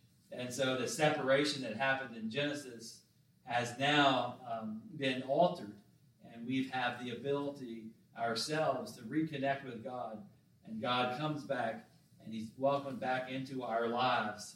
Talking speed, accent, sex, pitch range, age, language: 140 wpm, American, male, 120-145 Hz, 40-59, English